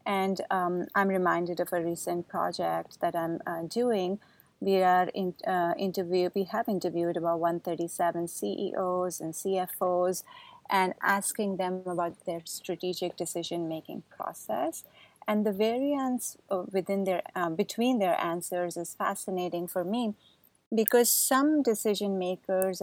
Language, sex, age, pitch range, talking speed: English, female, 30-49, 175-210 Hz, 130 wpm